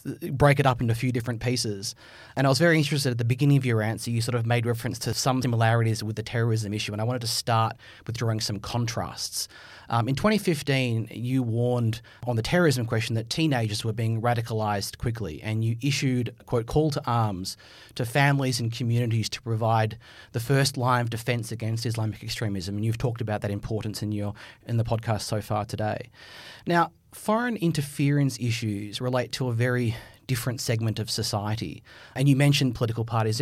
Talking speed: 190 wpm